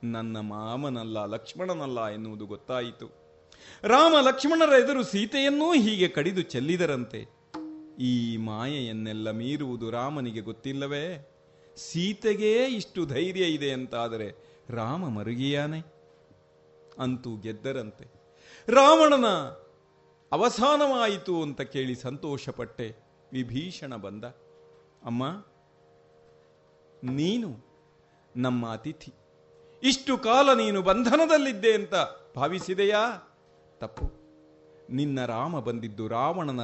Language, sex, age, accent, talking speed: Kannada, male, 40-59, native, 80 wpm